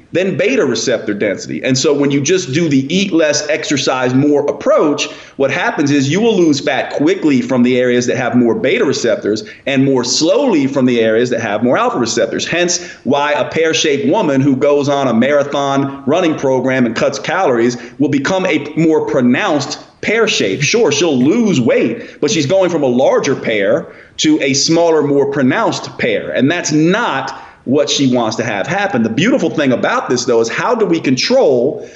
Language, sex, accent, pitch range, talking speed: English, male, American, 135-180 Hz, 195 wpm